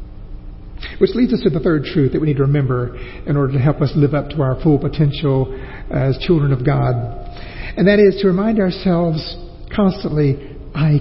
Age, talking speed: 50-69, 190 wpm